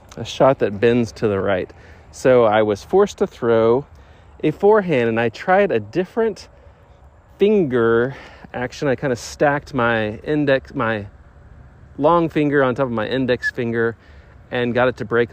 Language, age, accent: English, 40-59, American